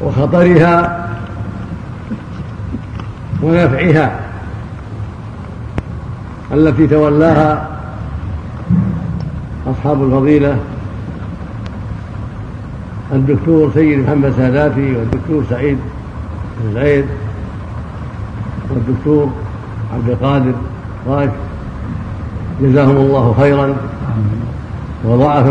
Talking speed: 50 wpm